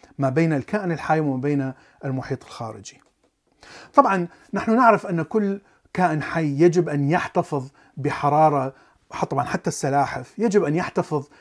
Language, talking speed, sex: Arabic, 130 wpm, male